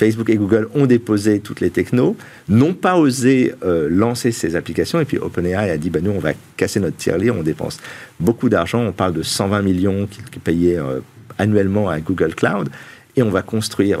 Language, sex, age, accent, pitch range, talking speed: French, male, 50-69, French, 90-120 Hz, 200 wpm